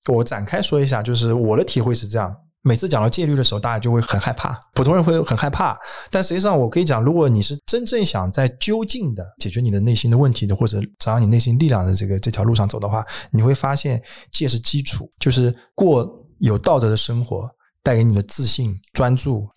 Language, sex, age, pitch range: Chinese, male, 20-39, 105-140 Hz